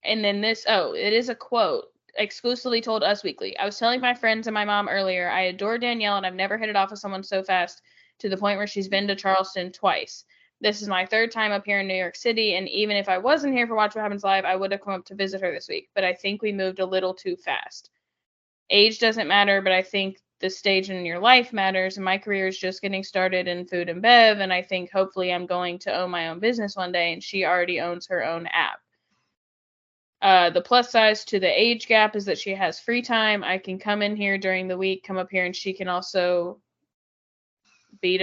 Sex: female